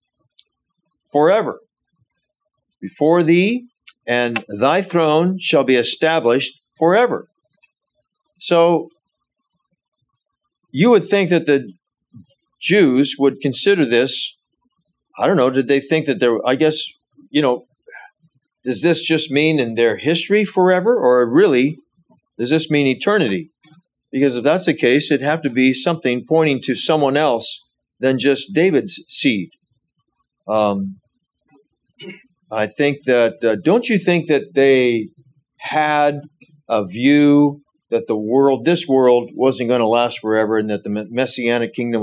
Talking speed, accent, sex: 130 wpm, American, male